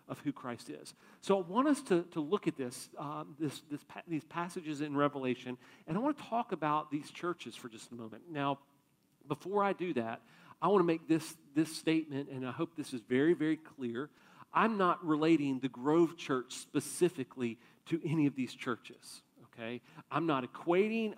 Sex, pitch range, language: male, 130-165 Hz, English